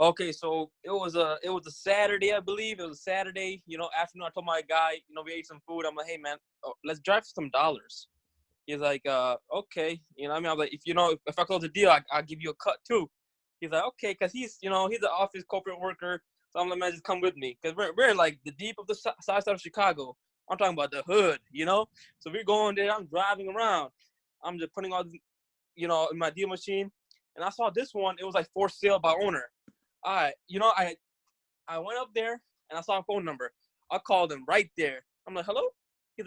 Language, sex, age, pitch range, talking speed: English, male, 10-29, 160-205 Hz, 260 wpm